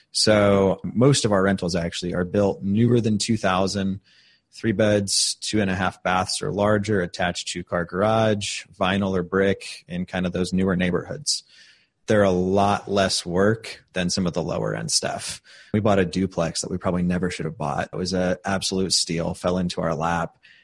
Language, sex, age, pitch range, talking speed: English, male, 30-49, 90-105 Hz, 190 wpm